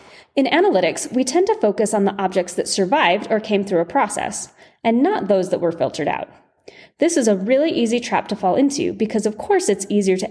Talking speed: 220 wpm